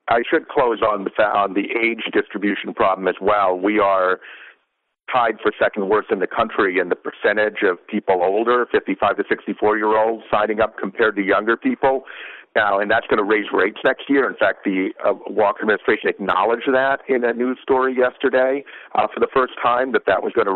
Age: 50-69